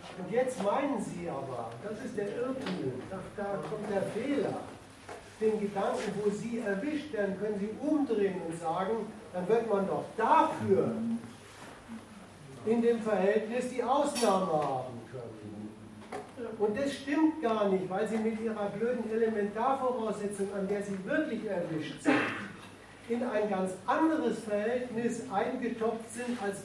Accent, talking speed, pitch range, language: German, 135 wpm, 190-230 Hz, German